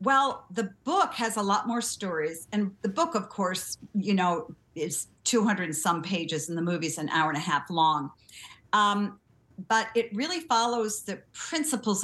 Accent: American